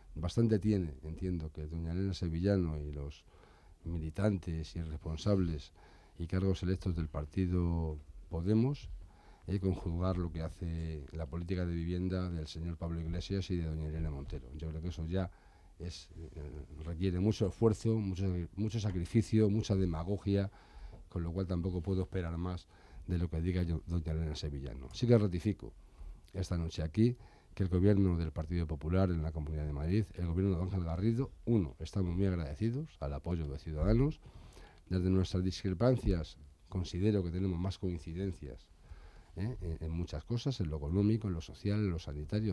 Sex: male